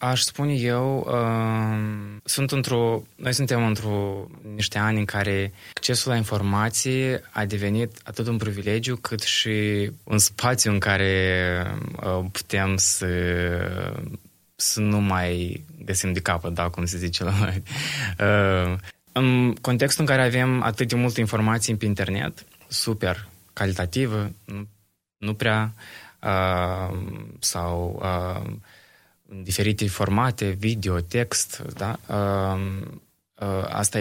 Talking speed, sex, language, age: 120 wpm, male, Romanian, 20-39